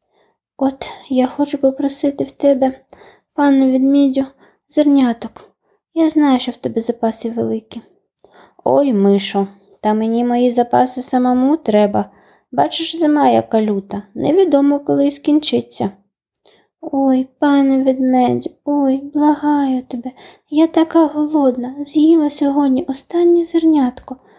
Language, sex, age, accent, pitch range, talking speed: Ukrainian, female, 20-39, native, 215-290 Hz, 110 wpm